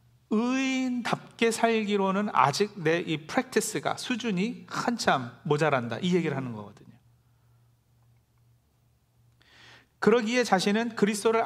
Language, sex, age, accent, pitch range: Korean, male, 40-59, native, 130-210 Hz